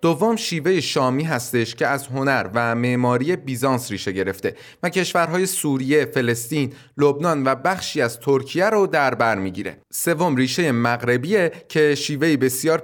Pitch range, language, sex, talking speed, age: 125-160 Hz, Persian, male, 140 wpm, 30-49